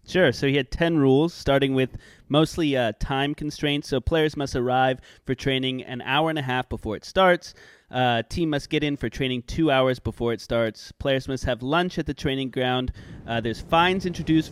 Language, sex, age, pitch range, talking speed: English, male, 30-49, 125-160 Hz, 205 wpm